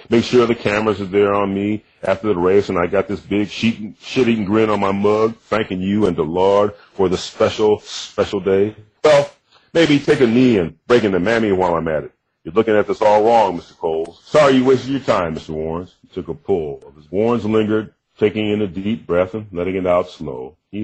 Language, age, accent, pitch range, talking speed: English, 40-59, American, 90-115 Hz, 225 wpm